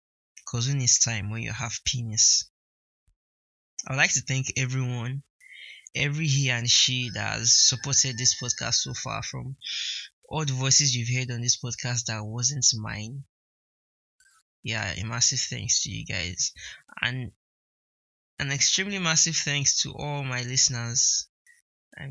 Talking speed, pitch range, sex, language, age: 145 wpm, 115-135 Hz, male, English, 20-39